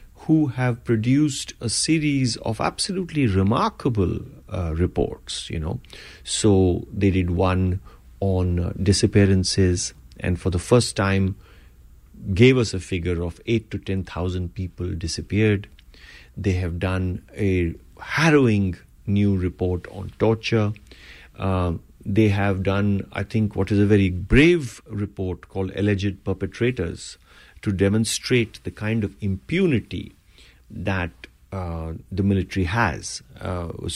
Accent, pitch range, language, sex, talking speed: Indian, 90-115 Hz, English, male, 125 wpm